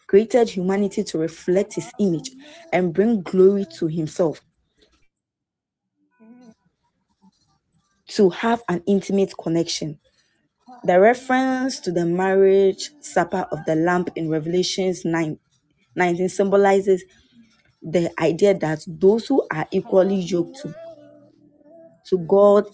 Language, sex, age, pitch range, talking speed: English, female, 20-39, 170-200 Hz, 105 wpm